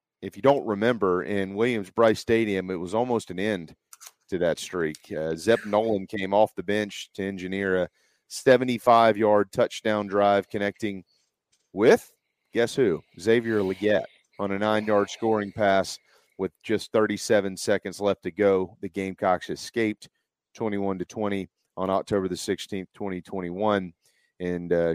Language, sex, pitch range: English, male, 95-115 Hz